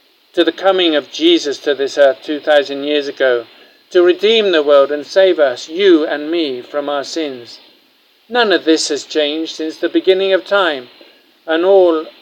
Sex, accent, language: male, British, English